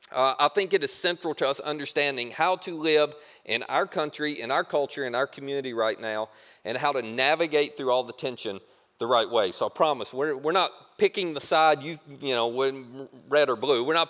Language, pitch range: English, 135-205 Hz